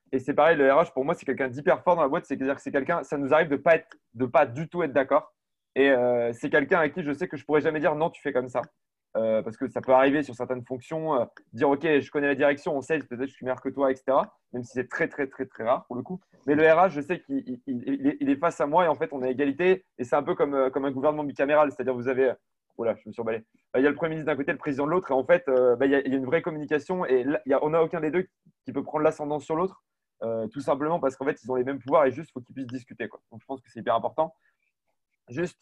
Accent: French